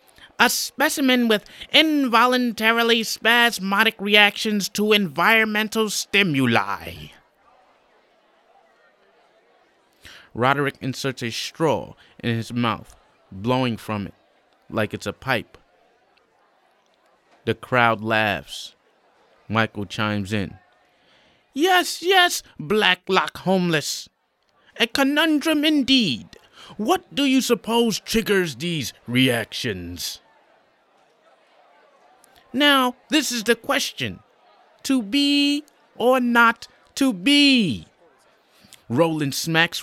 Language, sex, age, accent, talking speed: English, male, 20-39, American, 85 wpm